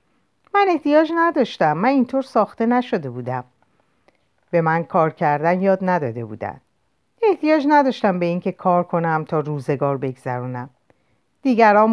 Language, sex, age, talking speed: Persian, female, 50-69, 130 wpm